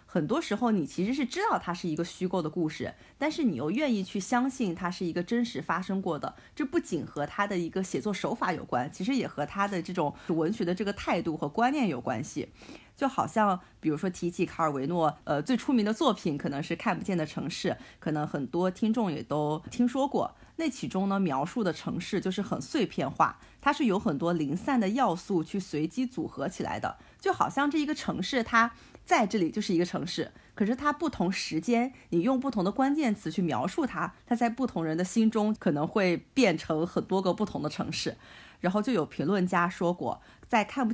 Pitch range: 165-230 Hz